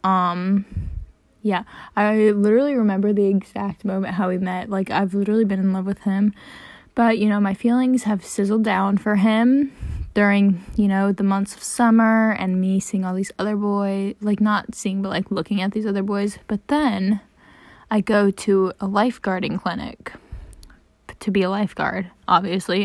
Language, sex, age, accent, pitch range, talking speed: English, female, 10-29, American, 195-225 Hz, 175 wpm